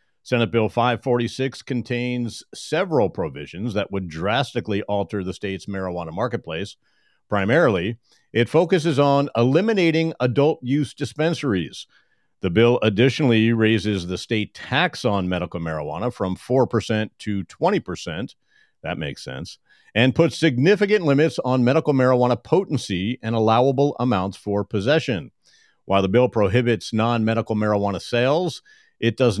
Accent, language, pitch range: American, English, 110-140 Hz